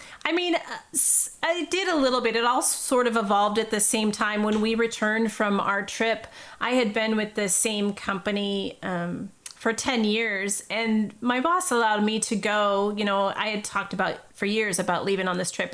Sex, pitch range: female, 200-230 Hz